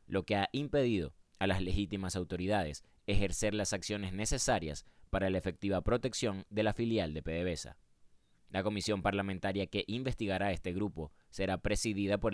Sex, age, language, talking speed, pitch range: male, 20-39, Spanish, 150 wpm, 90-105 Hz